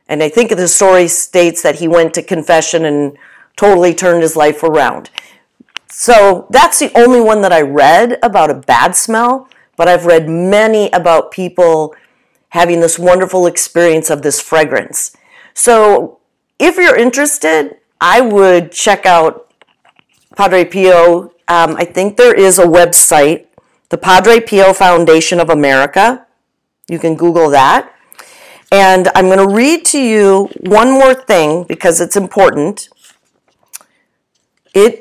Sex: female